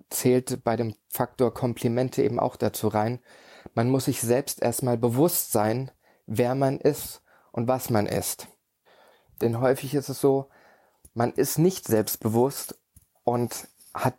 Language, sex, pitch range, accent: German, male, 115-135 Hz, German